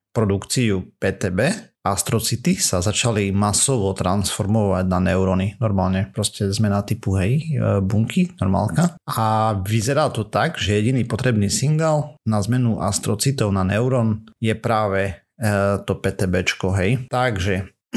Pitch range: 100-125 Hz